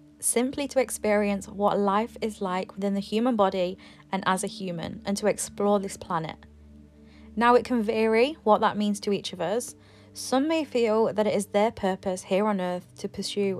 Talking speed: 195 wpm